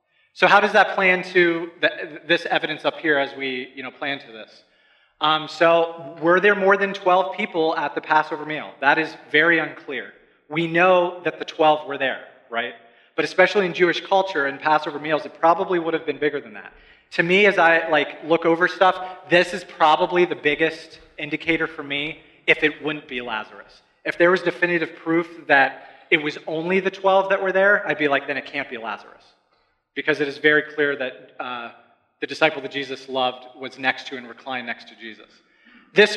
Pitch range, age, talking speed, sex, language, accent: 140-170 Hz, 30-49, 200 wpm, male, English, American